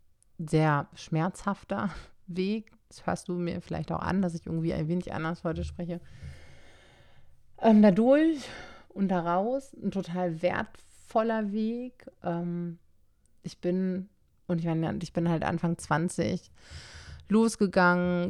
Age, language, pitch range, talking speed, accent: 30-49, German, 160-185 Hz, 125 wpm, German